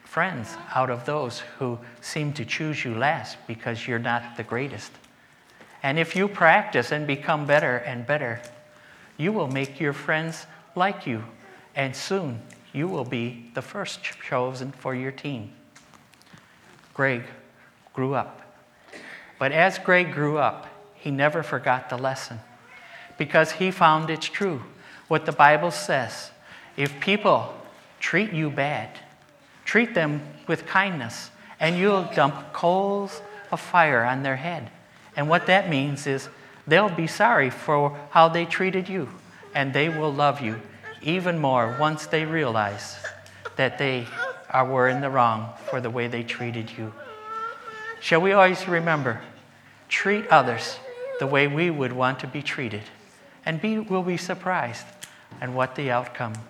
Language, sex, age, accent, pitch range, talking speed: English, male, 50-69, American, 125-170 Hz, 150 wpm